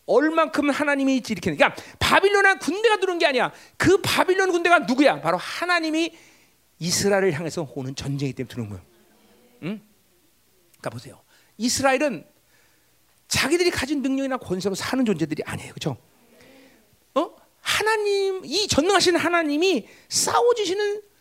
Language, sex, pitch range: Korean, male, 300-450 Hz